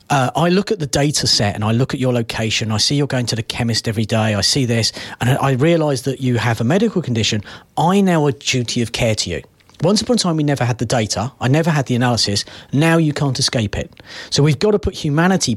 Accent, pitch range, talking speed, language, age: British, 120-170 Hz, 260 wpm, English, 40-59